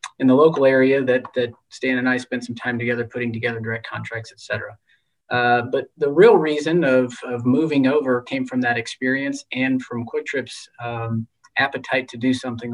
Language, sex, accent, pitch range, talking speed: English, male, American, 115-130 Hz, 185 wpm